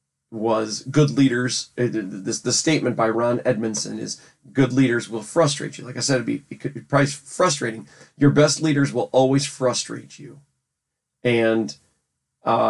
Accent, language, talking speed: American, English, 150 wpm